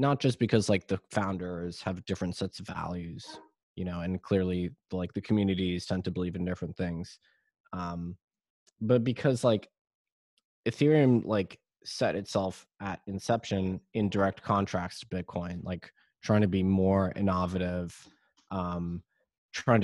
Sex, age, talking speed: male, 20-39, 140 wpm